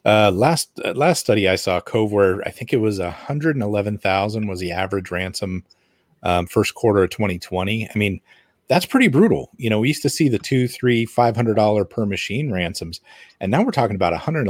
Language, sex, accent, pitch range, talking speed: English, male, American, 95-125 Hz, 225 wpm